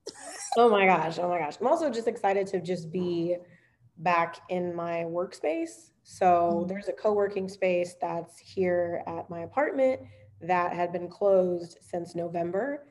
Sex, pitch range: female, 170-190 Hz